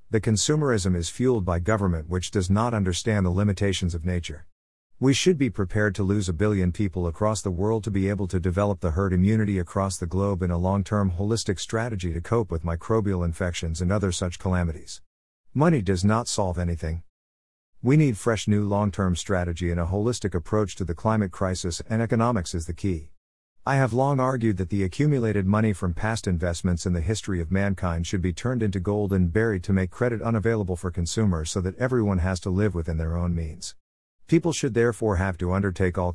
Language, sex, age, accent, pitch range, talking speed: English, male, 50-69, American, 90-110 Hz, 200 wpm